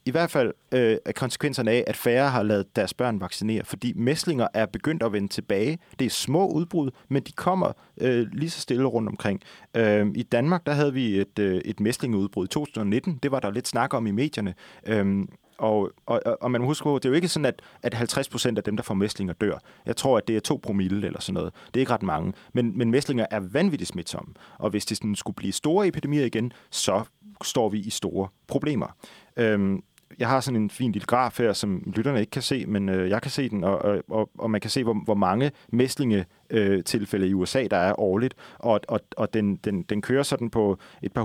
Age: 30-49